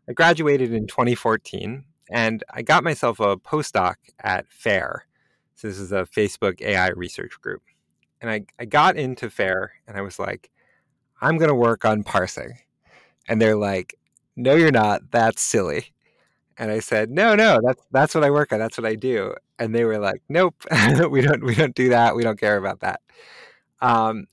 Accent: American